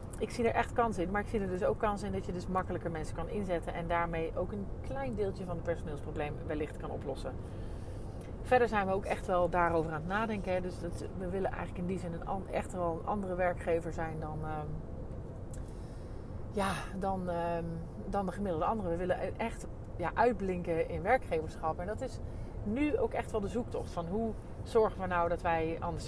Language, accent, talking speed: Dutch, Dutch, 210 wpm